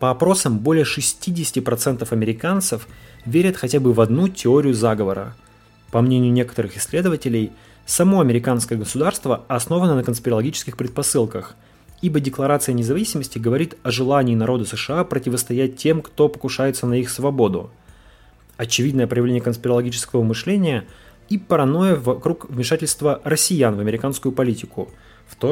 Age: 20-39